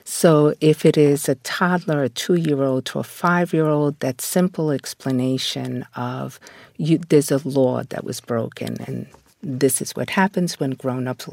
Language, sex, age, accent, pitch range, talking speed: English, female, 50-69, American, 130-165 Hz, 155 wpm